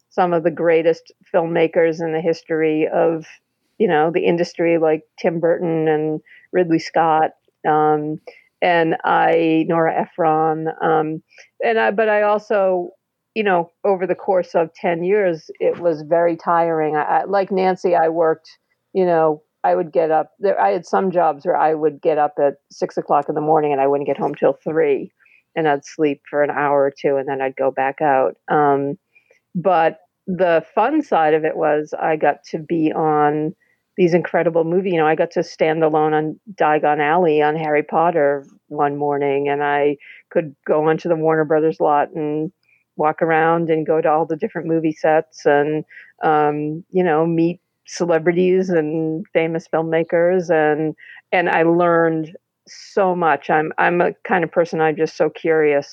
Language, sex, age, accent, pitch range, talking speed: English, female, 50-69, American, 155-175 Hz, 180 wpm